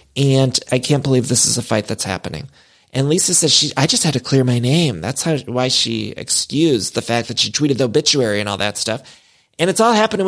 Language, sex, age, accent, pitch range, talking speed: English, male, 30-49, American, 120-155 Hz, 240 wpm